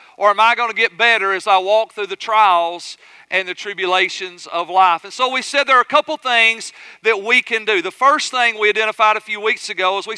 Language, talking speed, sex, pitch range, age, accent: English, 250 wpm, male, 205-245 Hz, 40-59, American